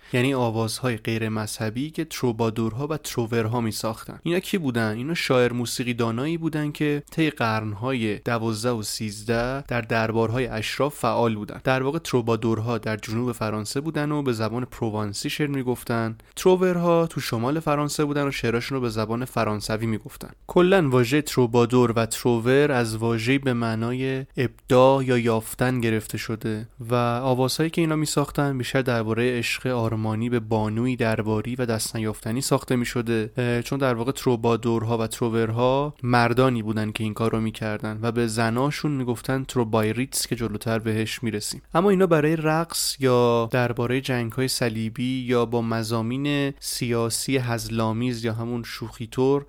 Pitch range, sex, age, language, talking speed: 115-135 Hz, male, 20-39, Persian, 160 wpm